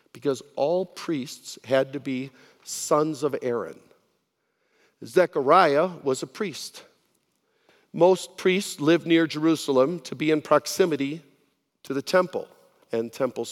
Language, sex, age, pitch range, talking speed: English, male, 50-69, 135-180 Hz, 120 wpm